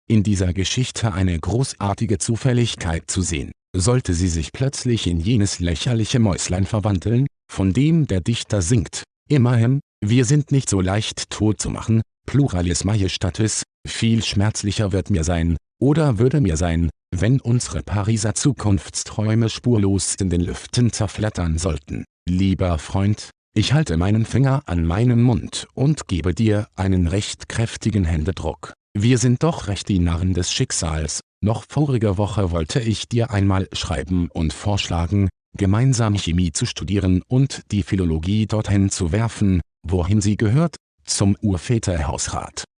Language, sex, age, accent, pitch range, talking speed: German, male, 50-69, German, 90-115 Hz, 140 wpm